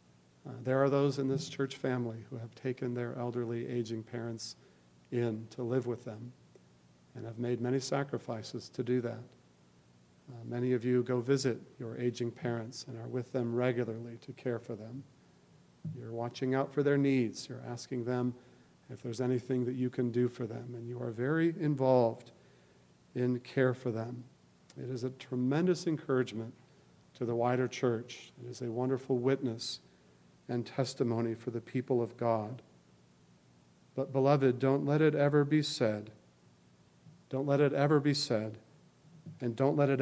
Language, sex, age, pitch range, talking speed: English, male, 40-59, 115-130 Hz, 170 wpm